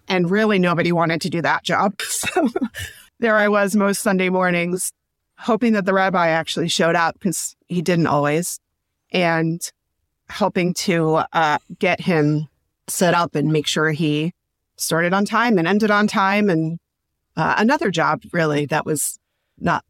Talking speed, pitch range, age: 160 wpm, 150-180 Hz, 30-49